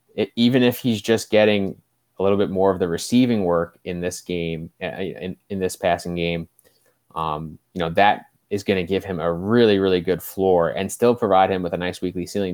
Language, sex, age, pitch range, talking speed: English, male, 20-39, 90-100 Hz, 215 wpm